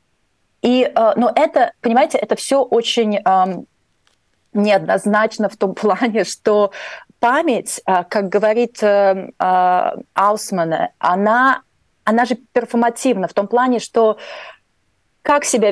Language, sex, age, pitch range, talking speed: Russian, female, 30-49, 185-235 Hz, 115 wpm